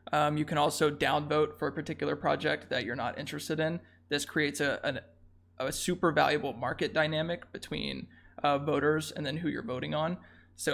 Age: 20-39